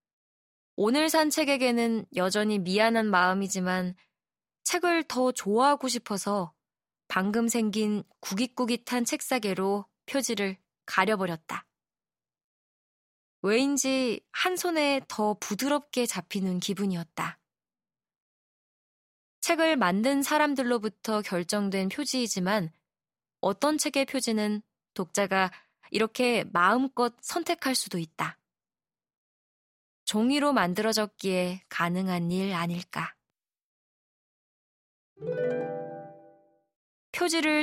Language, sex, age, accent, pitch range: Korean, female, 20-39, native, 185-255 Hz